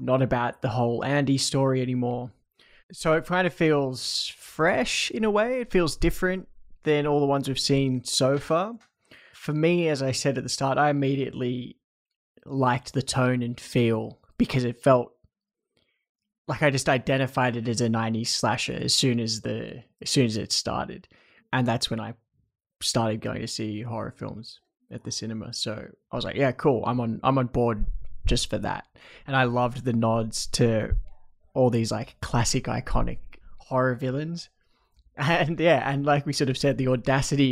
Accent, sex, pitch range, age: Australian, male, 120-145 Hz, 20-39